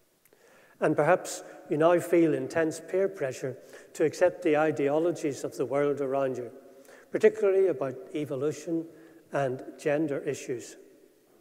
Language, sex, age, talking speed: English, male, 60-79, 120 wpm